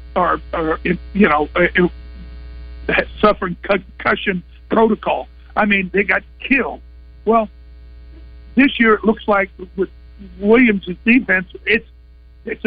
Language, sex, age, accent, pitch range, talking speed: English, male, 50-69, American, 175-215 Hz, 120 wpm